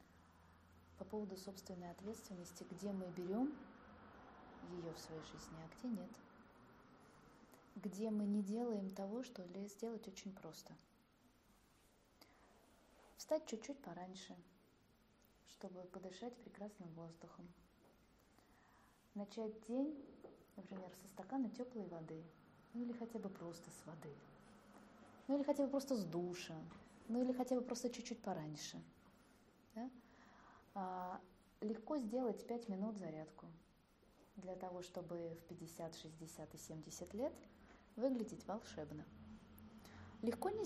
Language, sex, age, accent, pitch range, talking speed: Russian, female, 20-39, native, 175-255 Hz, 115 wpm